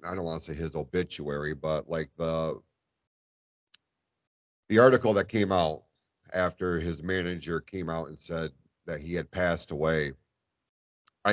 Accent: American